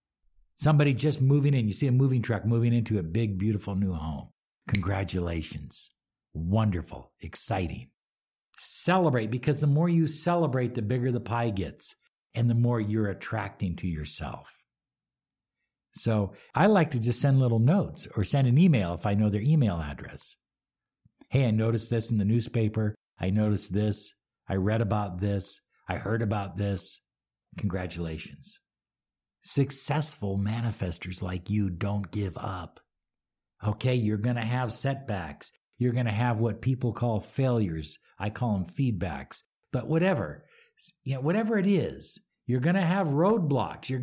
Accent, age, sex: American, 60-79, male